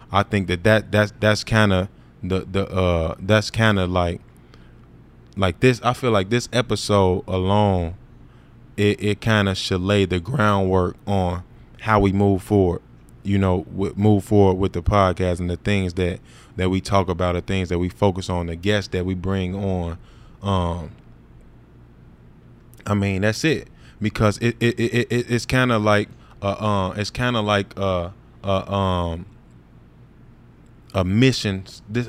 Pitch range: 90-110 Hz